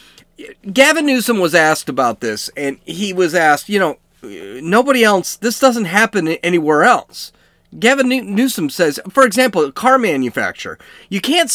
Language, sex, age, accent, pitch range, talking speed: English, male, 40-59, American, 160-260 Hz, 150 wpm